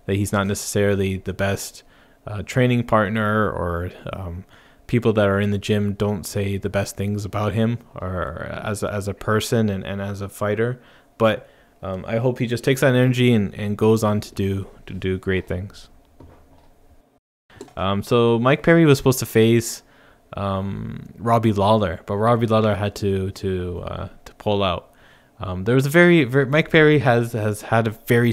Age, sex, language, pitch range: 20-39, male, English, 100-120 Hz